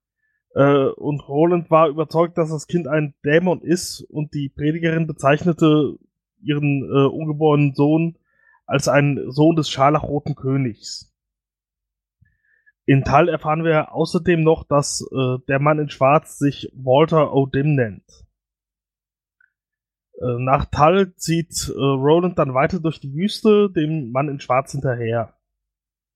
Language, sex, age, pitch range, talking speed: German, male, 20-39, 135-165 Hz, 120 wpm